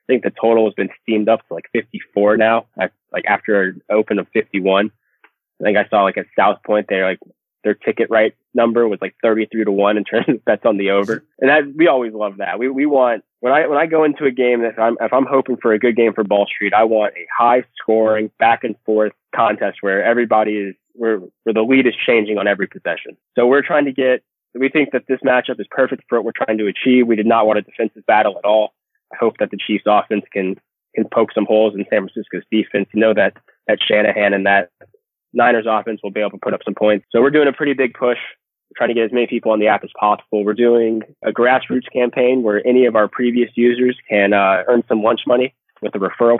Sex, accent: male, American